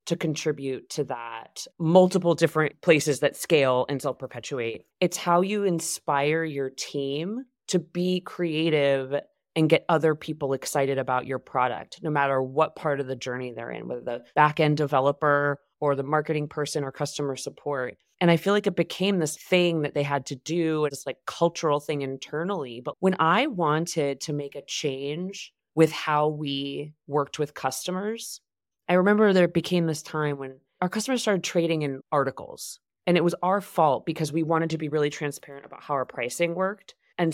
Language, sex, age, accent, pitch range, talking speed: English, female, 20-39, American, 140-175 Hz, 180 wpm